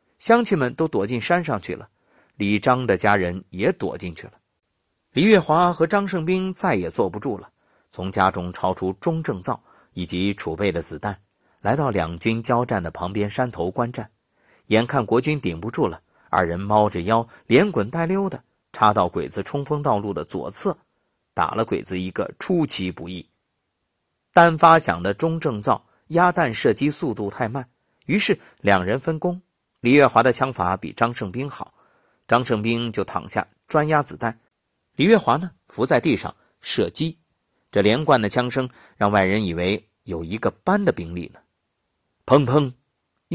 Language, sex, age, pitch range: Chinese, male, 50-69, 95-145 Hz